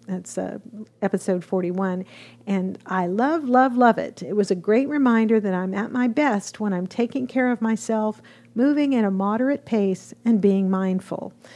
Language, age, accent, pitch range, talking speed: English, 50-69, American, 195-240 Hz, 175 wpm